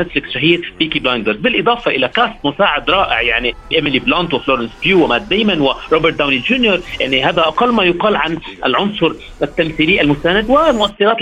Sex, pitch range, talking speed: male, 155-205 Hz, 145 wpm